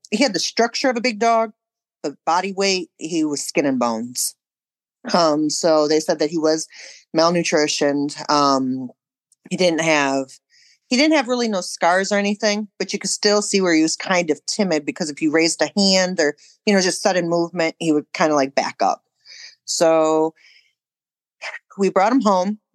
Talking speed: 185 wpm